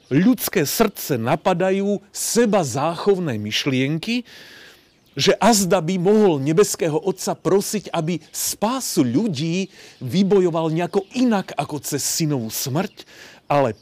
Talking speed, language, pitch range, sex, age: 105 wpm, Slovak, 135-200 Hz, male, 40-59